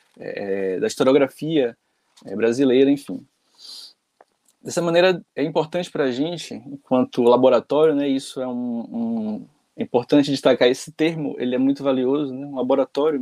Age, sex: 20-39, male